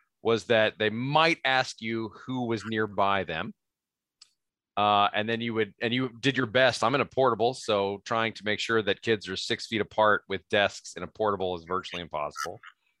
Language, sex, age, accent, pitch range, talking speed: English, male, 30-49, American, 100-125 Hz, 200 wpm